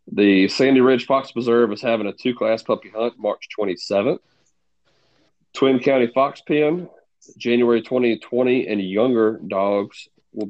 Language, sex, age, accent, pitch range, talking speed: English, male, 30-49, American, 95-130 Hz, 130 wpm